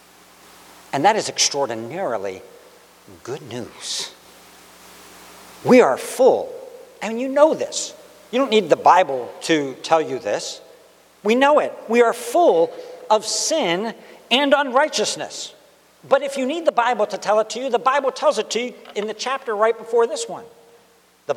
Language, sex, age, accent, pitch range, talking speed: English, male, 60-79, American, 165-275 Hz, 160 wpm